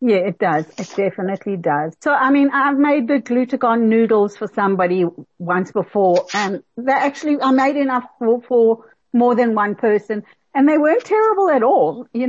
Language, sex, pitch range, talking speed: English, female, 200-270 Hz, 180 wpm